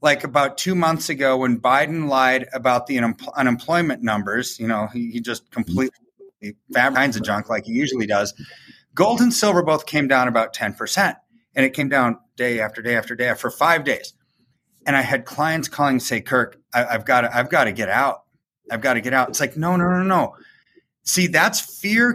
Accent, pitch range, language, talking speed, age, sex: American, 125-180 Hz, English, 205 wpm, 30-49, male